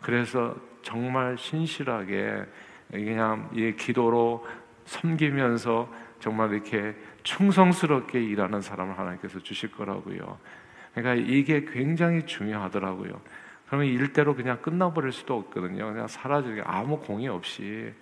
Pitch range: 105-135 Hz